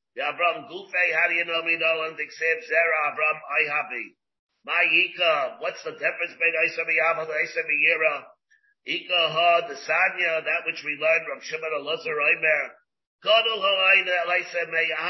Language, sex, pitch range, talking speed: English, male, 160-210 Hz, 160 wpm